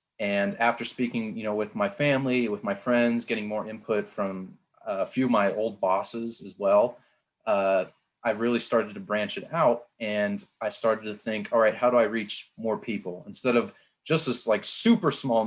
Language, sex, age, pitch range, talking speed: English, male, 20-39, 105-125 Hz, 200 wpm